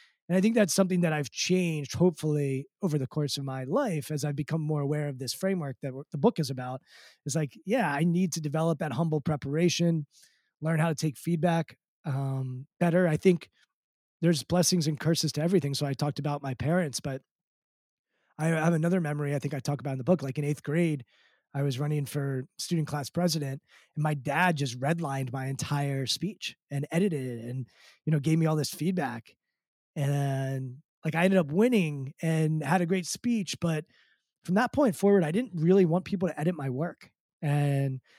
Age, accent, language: 20-39, American, English